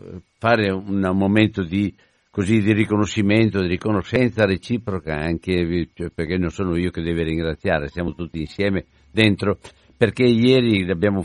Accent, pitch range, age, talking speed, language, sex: native, 90-115 Hz, 60-79, 135 wpm, Italian, male